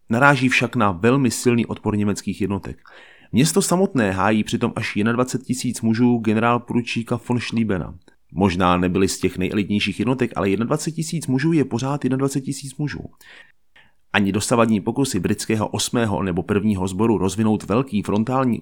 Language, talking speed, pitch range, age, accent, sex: Czech, 150 wpm, 105-130 Hz, 30-49, native, male